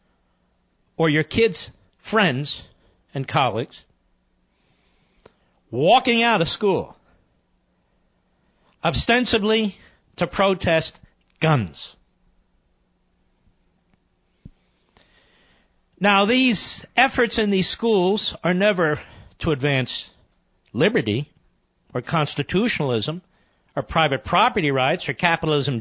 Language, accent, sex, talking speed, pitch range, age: English, American, male, 75 wpm, 145-220 Hz, 50-69